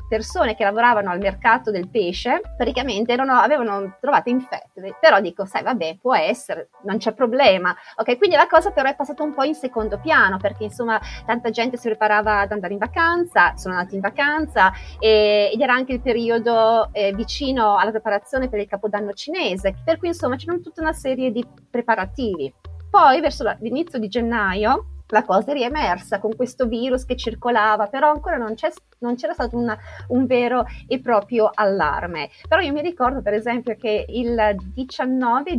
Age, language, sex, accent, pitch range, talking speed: 30-49, Italian, female, native, 205-260 Hz, 180 wpm